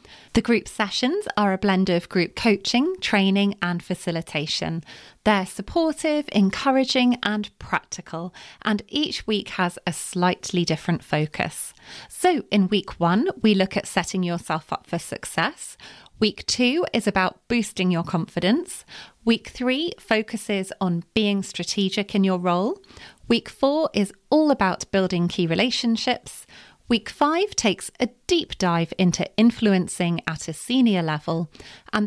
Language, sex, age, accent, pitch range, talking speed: English, female, 30-49, British, 175-235 Hz, 140 wpm